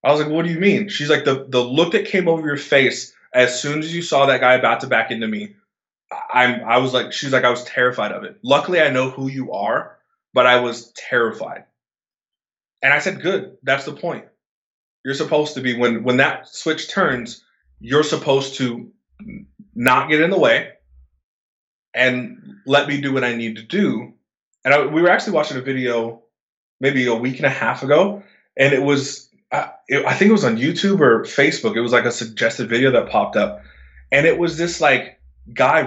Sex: male